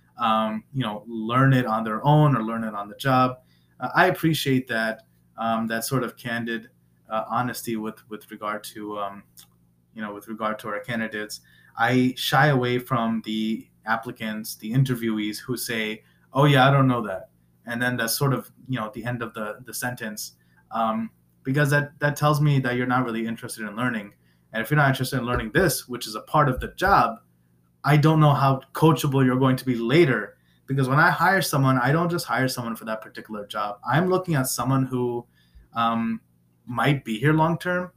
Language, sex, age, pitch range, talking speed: English, male, 20-39, 110-135 Hz, 205 wpm